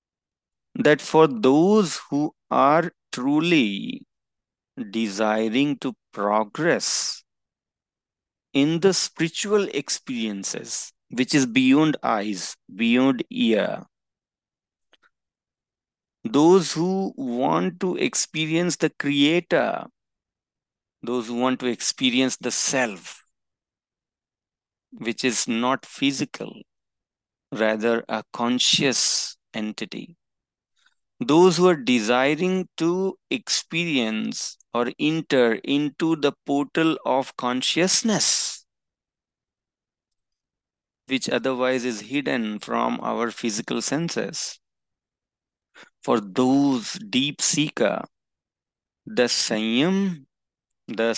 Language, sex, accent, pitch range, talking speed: English, male, Indian, 115-170 Hz, 80 wpm